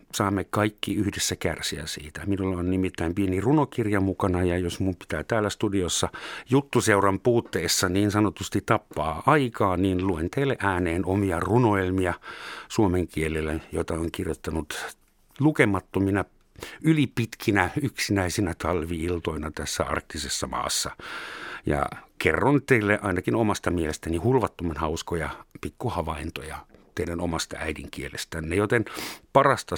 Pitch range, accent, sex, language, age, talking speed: 85-110 Hz, native, male, Finnish, 60-79, 110 wpm